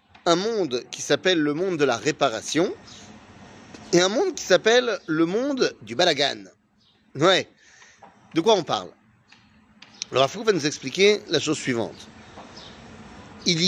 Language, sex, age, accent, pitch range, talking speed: French, male, 30-49, French, 150-220 Hz, 135 wpm